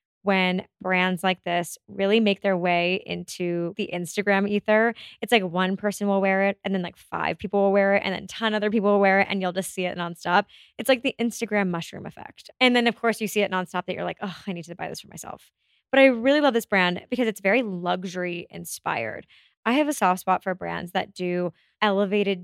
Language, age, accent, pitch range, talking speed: English, 20-39, American, 185-215 Hz, 240 wpm